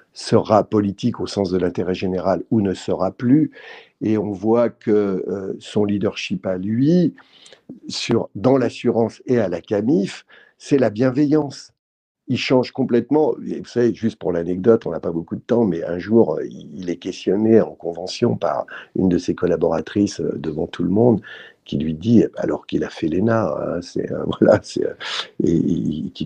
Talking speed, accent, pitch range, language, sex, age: 175 wpm, French, 95-125 Hz, French, male, 60-79